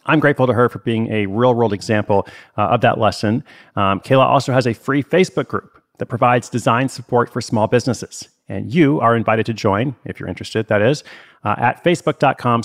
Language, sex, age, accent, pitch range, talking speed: English, male, 40-59, American, 105-135 Hz, 205 wpm